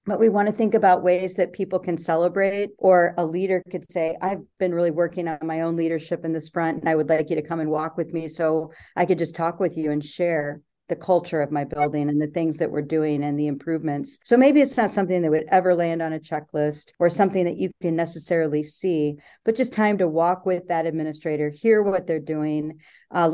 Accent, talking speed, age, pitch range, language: American, 240 wpm, 40-59, 160-185 Hz, English